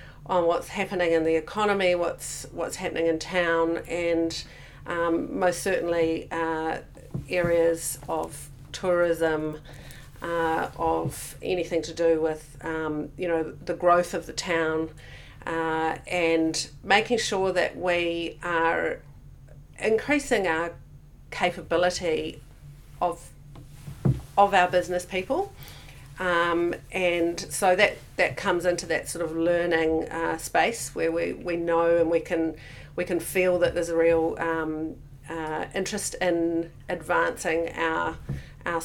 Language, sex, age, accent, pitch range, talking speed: English, female, 40-59, Australian, 160-180 Hz, 125 wpm